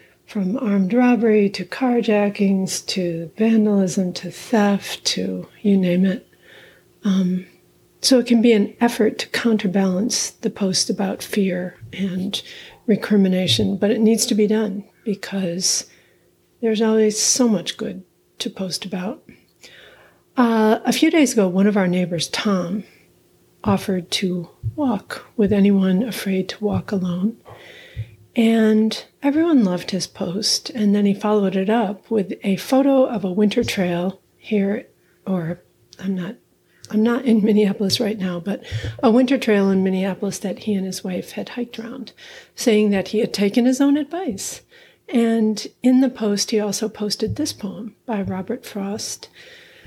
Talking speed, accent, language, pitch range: 150 wpm, American, English, 190-230 Hz